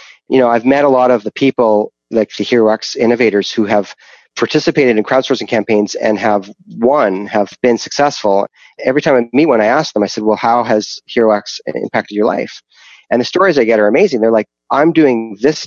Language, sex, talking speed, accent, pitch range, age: English, male, 205 wpm, American, 105-125 Hz, 30-49